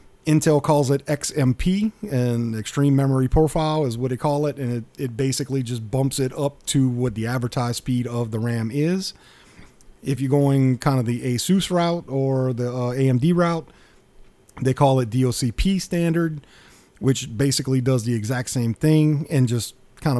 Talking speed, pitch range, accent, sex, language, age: 170 wpm, 125-150 Hz, American, male, English, 40-59